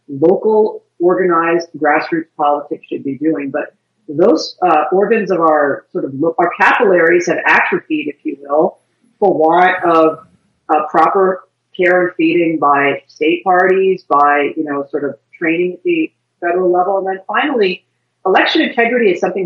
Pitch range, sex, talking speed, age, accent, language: 155-185 Hz, female, 155 wpm, 40-59, American, English